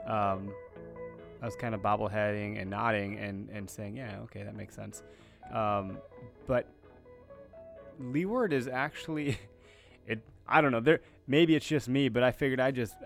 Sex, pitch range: male, 100-120 Hz